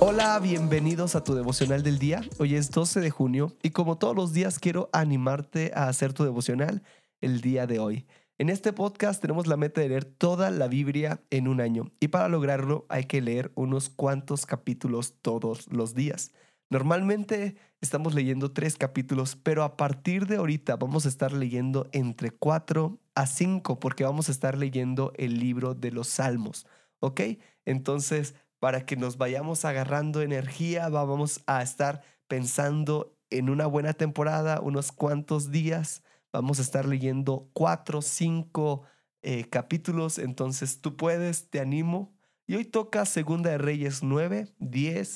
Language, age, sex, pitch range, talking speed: Spanish, 20-39, male, 135-160 Hz, 160 wpm